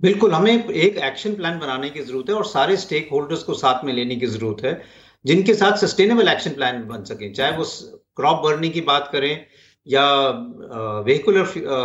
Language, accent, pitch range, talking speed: English, Indian, 150-205 Hz, 175 wpm